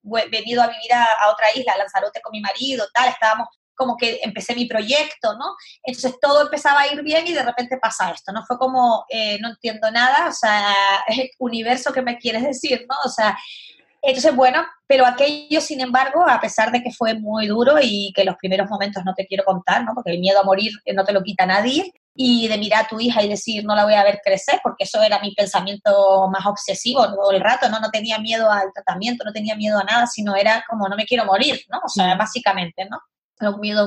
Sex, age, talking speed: female, 20-39, 235 wpm